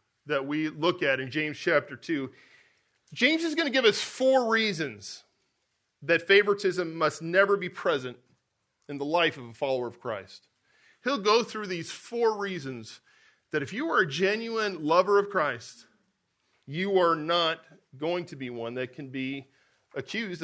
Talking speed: 165 wpm